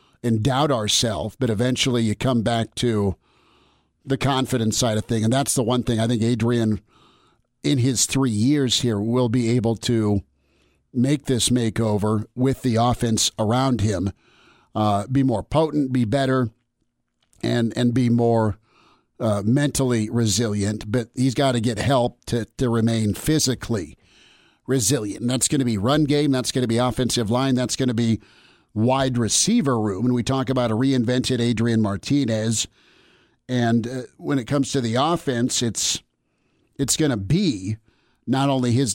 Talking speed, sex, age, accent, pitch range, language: 165 wpm, male, 50-69, American, 110-135 Hz, English